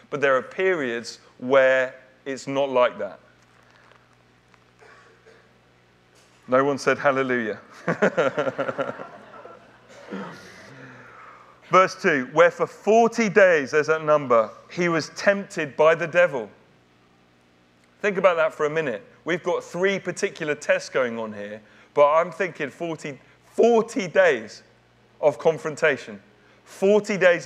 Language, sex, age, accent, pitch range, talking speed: English, male, 40-59, British, 110-180 Hz, 115 wpm